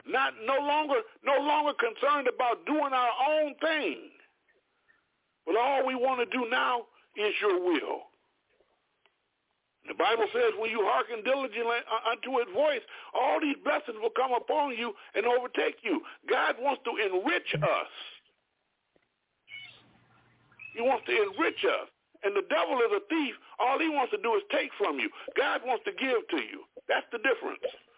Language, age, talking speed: English, 60-79, 165 wpm